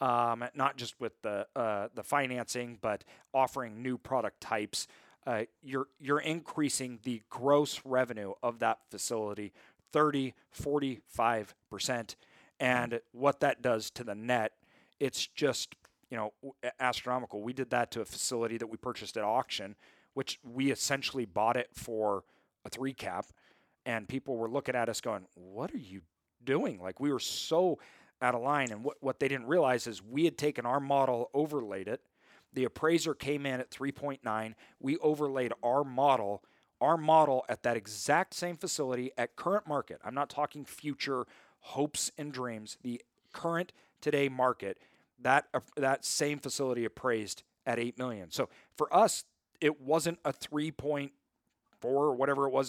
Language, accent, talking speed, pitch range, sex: English, American, 160 wpm, 120-145 Hz, male